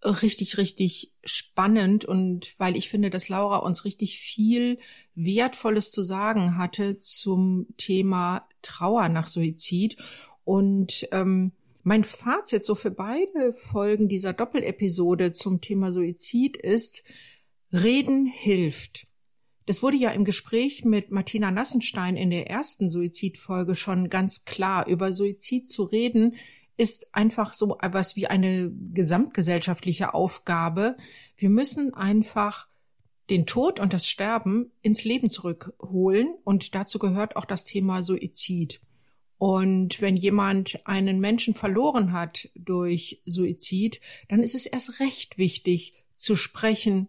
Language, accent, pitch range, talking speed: German, German, 180-215 Hz, 125 wpm